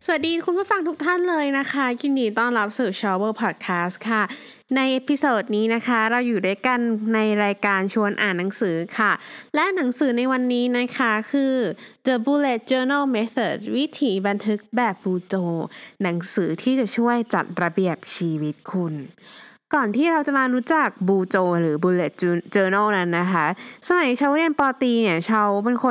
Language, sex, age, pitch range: Thai, female, 20-39, 180-255 Hz